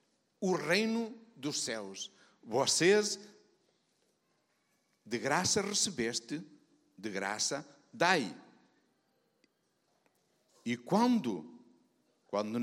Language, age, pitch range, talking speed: Portuguese, 60-79, 135-190 Hz, 65 wpm